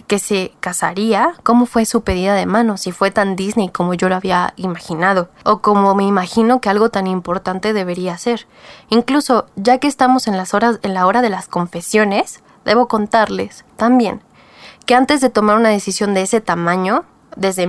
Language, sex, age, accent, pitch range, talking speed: Spanish, female, 20-39, Mexican, 185-225 Hz, 175 wpm